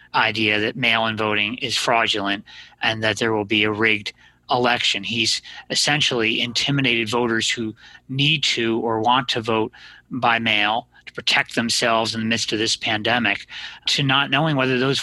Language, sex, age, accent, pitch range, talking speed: English, male, 30-49, American, 115-135 Hz, 165 wpm